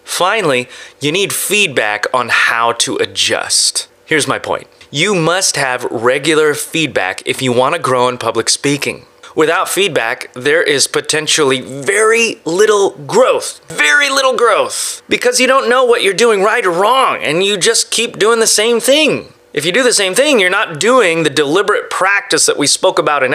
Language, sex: English, male